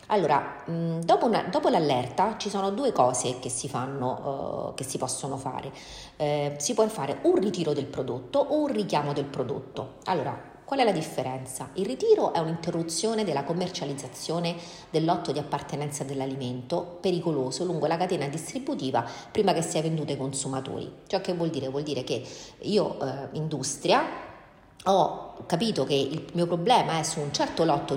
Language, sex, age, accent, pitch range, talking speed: Italian, female, 40-59, native, 140-185 Hz, 165 wpm